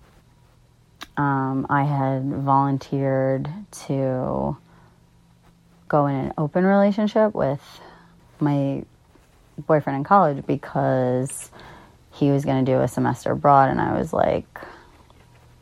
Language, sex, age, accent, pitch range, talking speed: English, female, 30-49, American, 135-160 Hz, 110 wpm